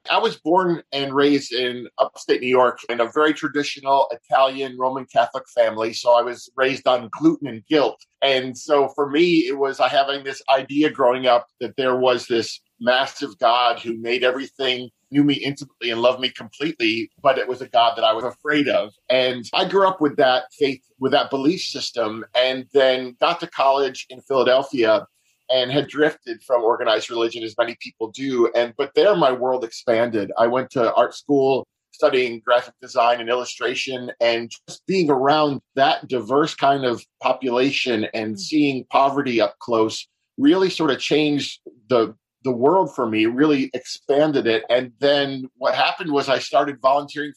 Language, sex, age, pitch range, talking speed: English, male, 40-59, 120-145 Hz, 175 wpm